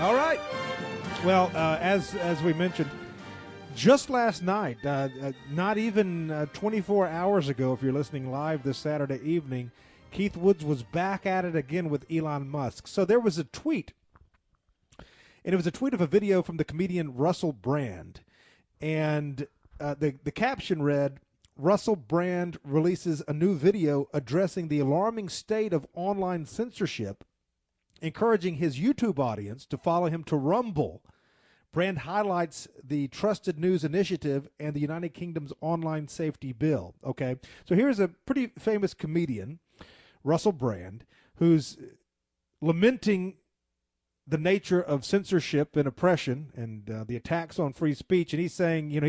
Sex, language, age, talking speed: male, English, 40-59, 150 wpm